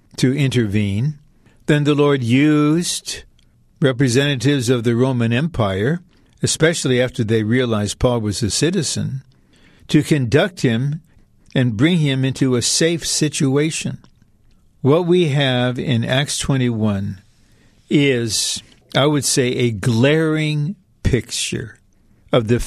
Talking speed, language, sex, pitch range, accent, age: 115 wpm, English, male, 115-145 Hz, American, 60-79